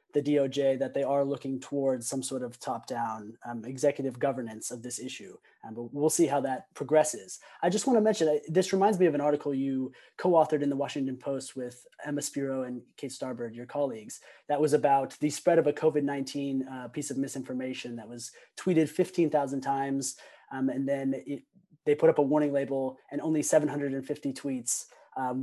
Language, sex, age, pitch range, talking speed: English, male, 20-39, 130-155 Hz, 195 wpm